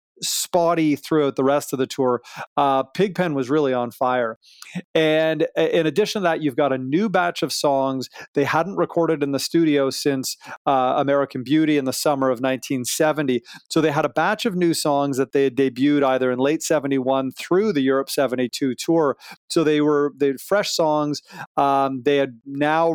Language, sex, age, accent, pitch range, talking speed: English, male, 40-59, American, 135-160 Hz, 190 wpm